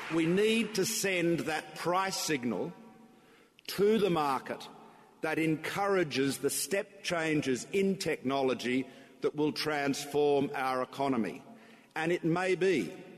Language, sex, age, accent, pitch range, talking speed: English, male, 50-69, Australian, 140-190 Hz, 120 wpm